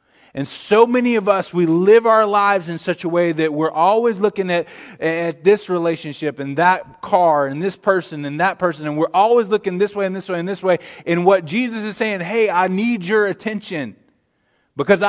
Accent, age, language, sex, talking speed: American, 20-39, English, male, 210 wpm